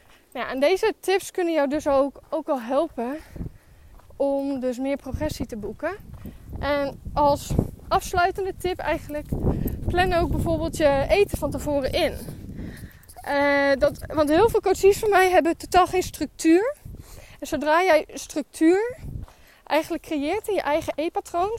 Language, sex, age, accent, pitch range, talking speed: Dutch, female, 10-29, Dutch, 255-335 Hz, 145 wpm